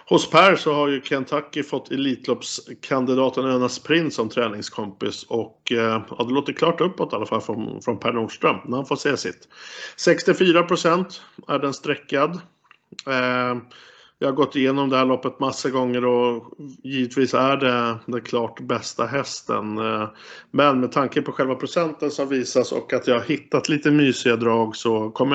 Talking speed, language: 160 wpm, Swedish